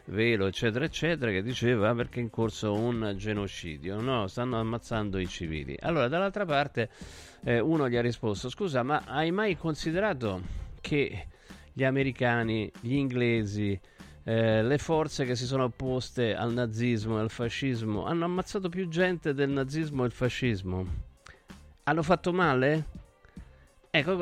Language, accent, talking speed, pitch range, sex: Italian, native, 145 wpm, 110-155 Hz, male